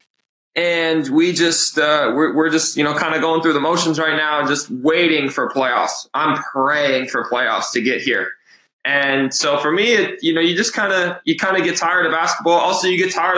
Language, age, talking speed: English, 20-39, 225 wpm